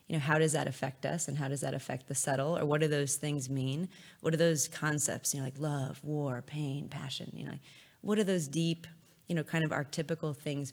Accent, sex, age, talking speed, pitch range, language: American, female, 20-39, 240 wpm, 145-170 Hz, English